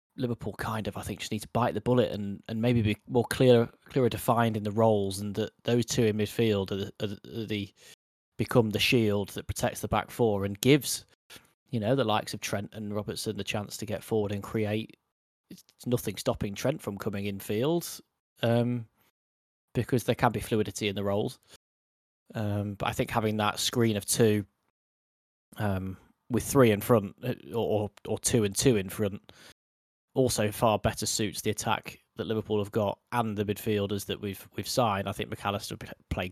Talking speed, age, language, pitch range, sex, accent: 195 wpm, 20-39, English, 100-115 Hz, male, British